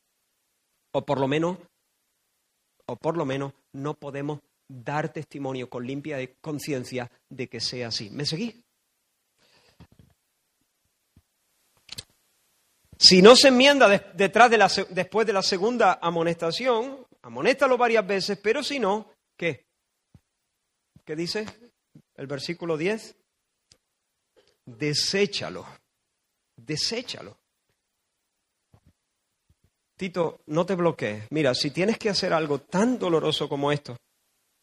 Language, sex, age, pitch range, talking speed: Spanish, male, 40-59, 150-225 Hz, 110 wpm